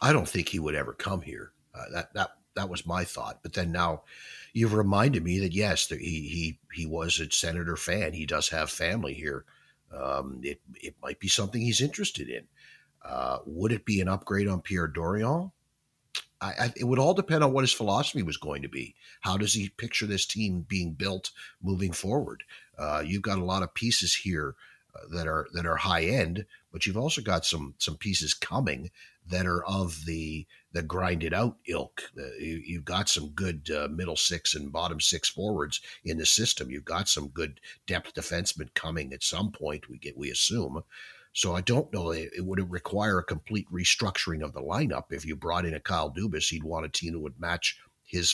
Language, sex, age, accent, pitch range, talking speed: English, male, 50-69, American, 80-105 Hz, 205 wpm